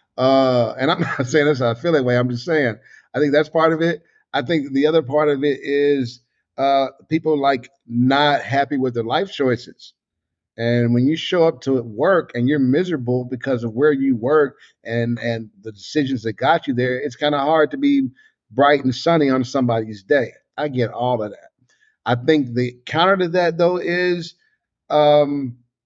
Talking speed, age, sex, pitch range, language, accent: 195 wpm, 50-69, male, 130-175 Hz, English, American